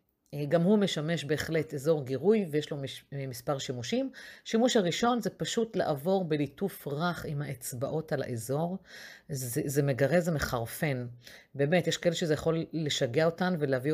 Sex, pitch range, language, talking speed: female, 135-180 Hz, Hebrew, 150 wpm